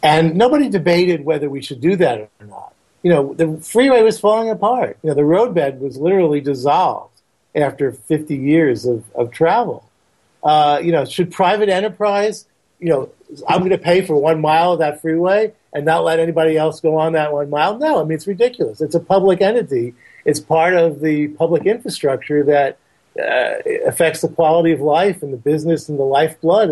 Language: English